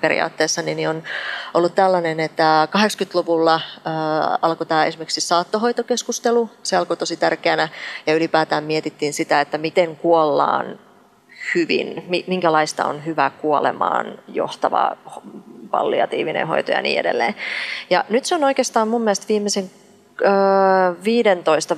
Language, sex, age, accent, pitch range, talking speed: Finnish, female, 30-49, native, 160-195 Hz, 115 wpm